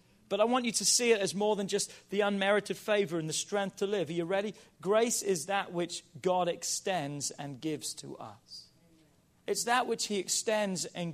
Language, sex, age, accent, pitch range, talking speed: English, male, 40-59, British, 135-180 Hz, 205 wpm